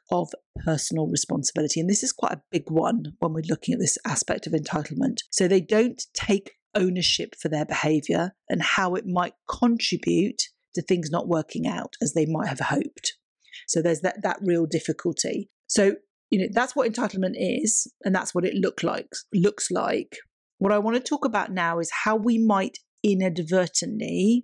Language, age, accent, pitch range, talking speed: English, 40-59, British, 165-220 Hz, 180 wpm